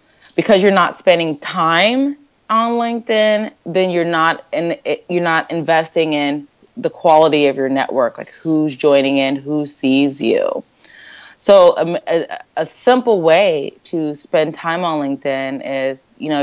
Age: 20-39